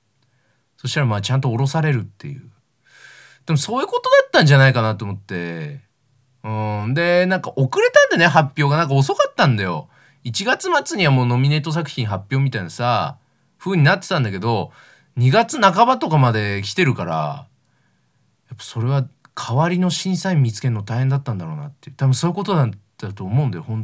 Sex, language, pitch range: male, Japanese, 110-140 Hz